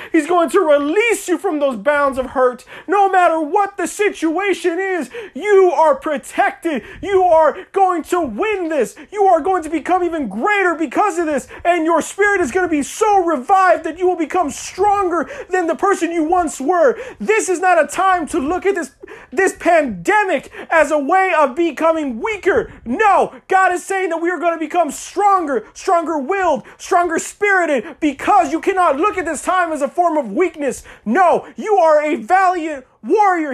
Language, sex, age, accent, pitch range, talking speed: Spanish, male, 30-49, American, 310-370 Hz, 190 wpm